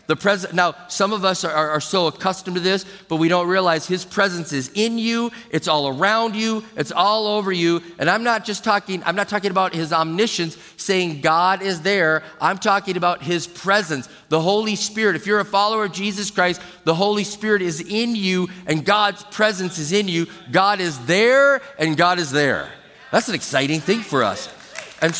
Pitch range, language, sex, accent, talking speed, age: 160-200 Hz, English, male, American, 200 wpm, 40-59